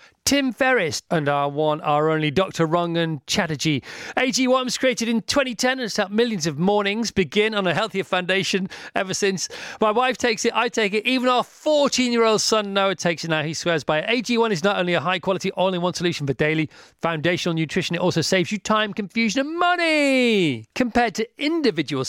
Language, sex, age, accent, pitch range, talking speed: English, male, 40-59, British, 160-225 Hz, 190 wpm